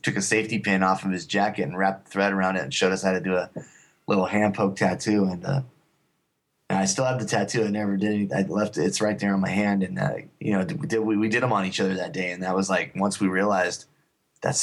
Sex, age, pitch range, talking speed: male, 20-39, 95-110 Hz, 270 wpm